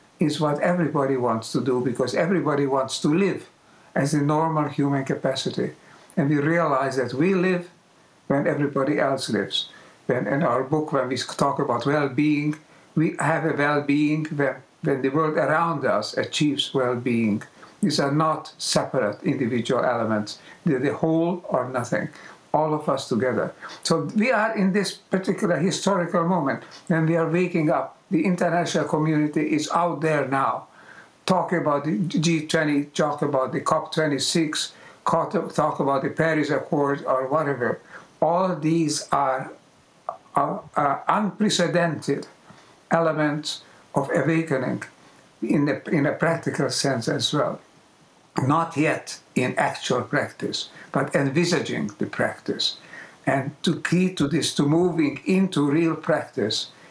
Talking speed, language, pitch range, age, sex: 140 wpm, English, 140-165 Hz, 60-79, male